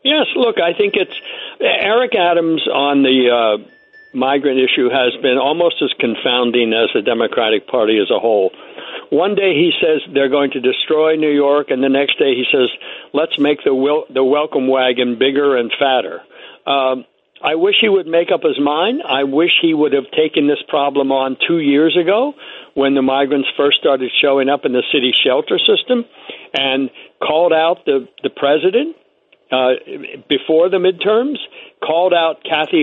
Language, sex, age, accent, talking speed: English, male, 60-79, American, 175 wpm